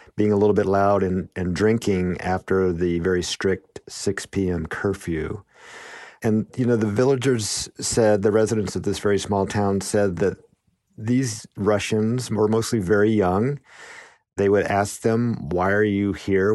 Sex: male